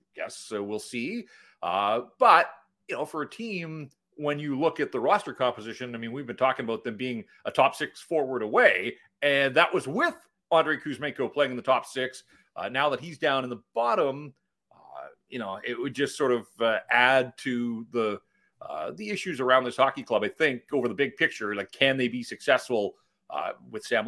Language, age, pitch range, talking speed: English, 40-59, 125-185 Hz, 205 wpm